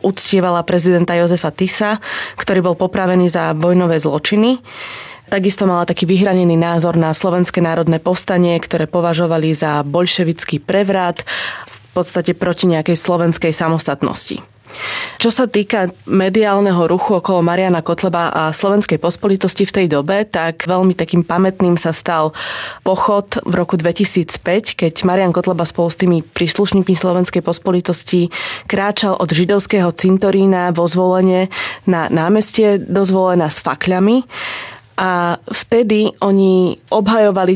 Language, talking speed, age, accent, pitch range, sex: Czech, 125 wpm, 20-39, native, 170-195 Hz, female